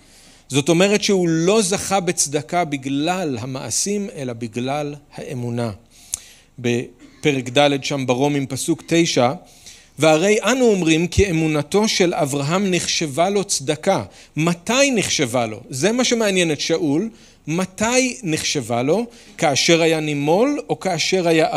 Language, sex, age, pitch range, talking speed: Hebrew, male, 40-59, 125-180 Hz, 120 wpm